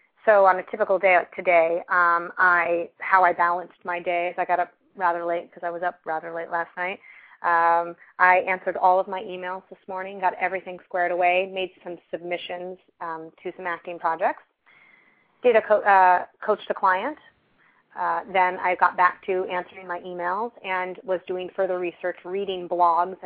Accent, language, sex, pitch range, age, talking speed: American, English, female, 175-195 Hz, 30-49, 185 wpm